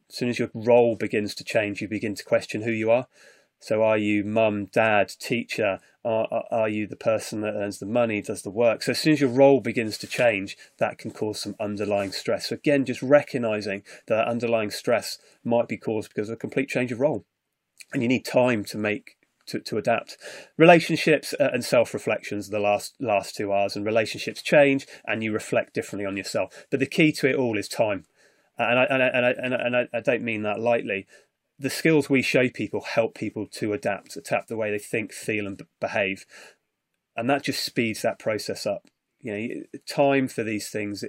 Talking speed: 215 wpm